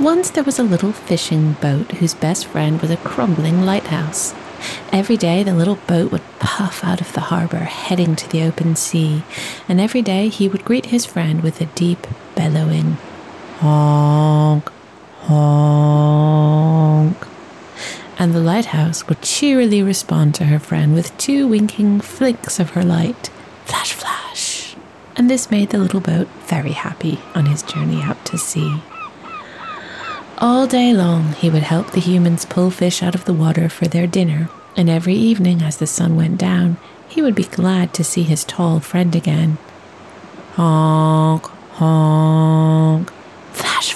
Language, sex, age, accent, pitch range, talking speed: English, female, 30-49, British, 160-190 Hz, 155 wpm